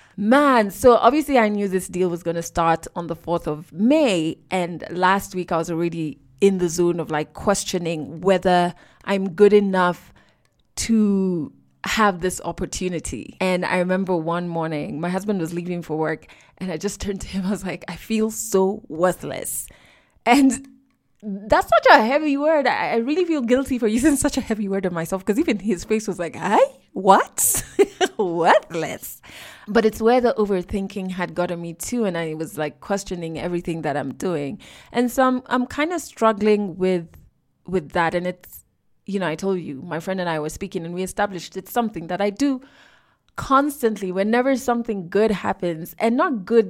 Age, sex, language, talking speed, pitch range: 20-39, female, English, 185 wpm, 175-225 Hz